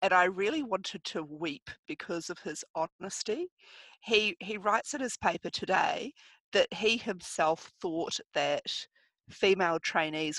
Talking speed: 140 wpm